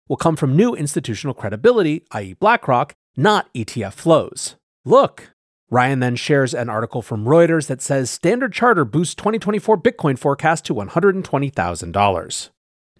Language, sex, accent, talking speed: English, male, American, 135 wpm